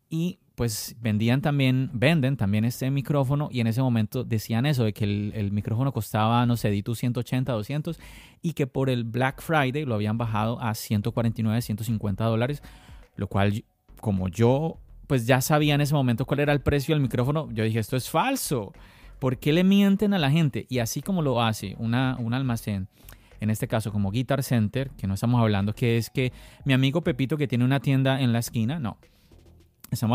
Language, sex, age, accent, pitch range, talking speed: Spanish, male, 30-49, Colombian, 115-145 Hz, 195 wpm